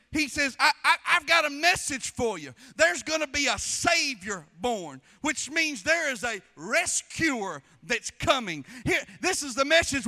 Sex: male